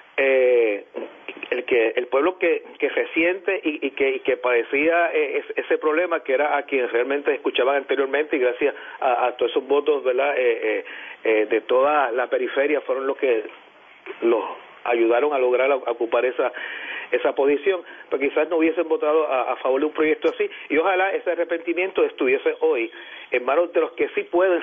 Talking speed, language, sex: 185 wpm, Spanish, male